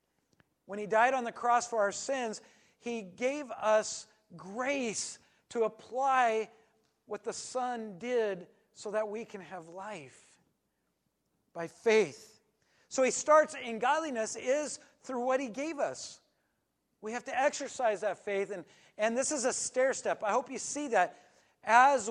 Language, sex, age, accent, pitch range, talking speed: English, male, 40-59, American, 205-255 Hz, 155 wpm